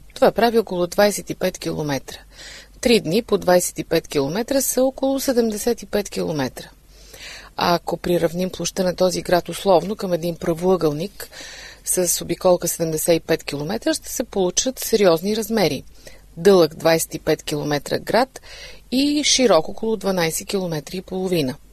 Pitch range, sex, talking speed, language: 170-230 Hz, female, 120 wpm, Bulgarian